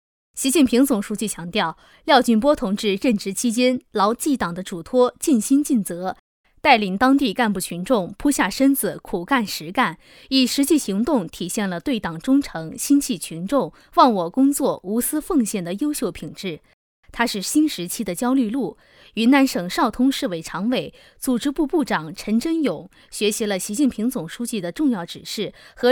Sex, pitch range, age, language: female, 195-275 Hz, 20-39, Chinese